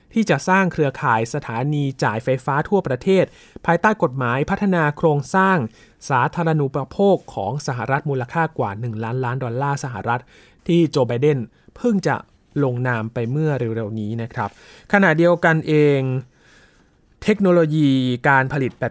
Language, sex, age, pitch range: Thai, male, 20-39, 125-165 Hz